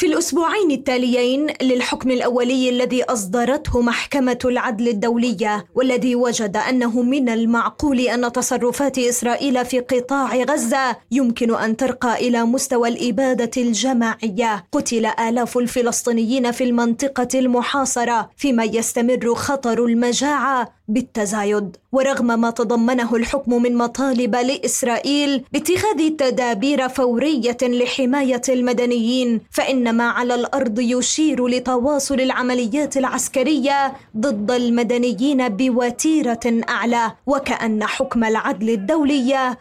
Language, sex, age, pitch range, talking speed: Arabic, female, 20-39, 235-265 Hz, 100 wpm